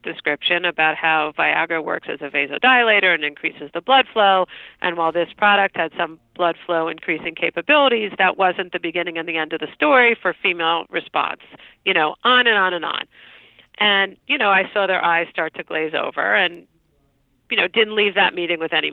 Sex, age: female, 50-69